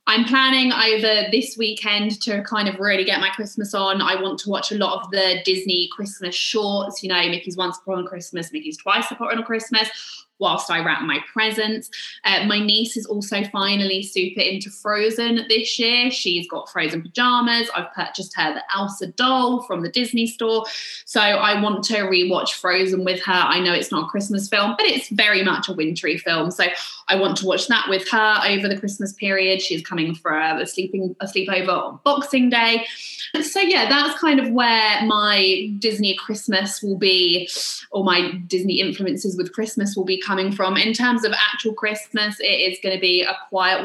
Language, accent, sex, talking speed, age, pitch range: English, British, female, 195 wpm, 20-39, 180-220 Hz